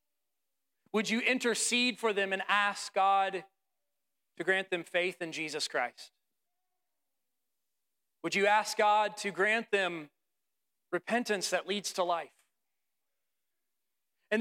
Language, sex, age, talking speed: English, male, 40-59, 115 wpm